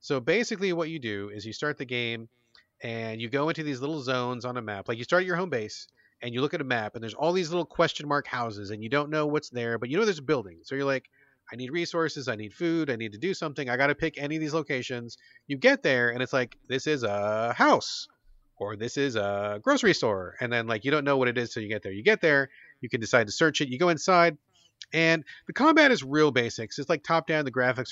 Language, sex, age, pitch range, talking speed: English, male, 30-49, 115-155 Hz, 275 wpm